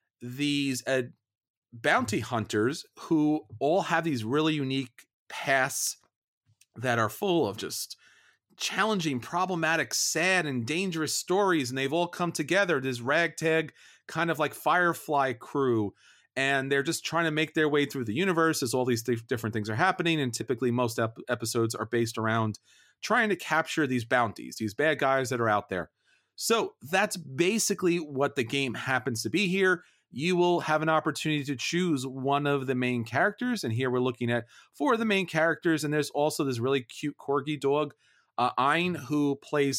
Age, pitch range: 40-59, 125-165 Hz